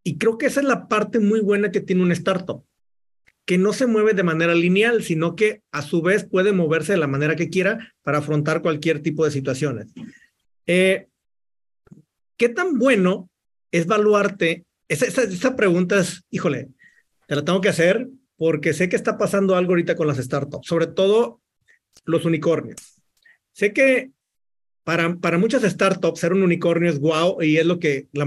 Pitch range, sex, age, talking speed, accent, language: 165-210 Hz, male, 40-59, 185 wpm, Mexican, Spanish